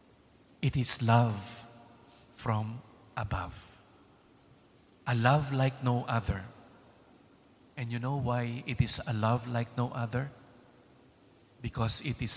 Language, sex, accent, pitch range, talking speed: Indonesian, male, Filipino, 100-125 Hz, 115 wpm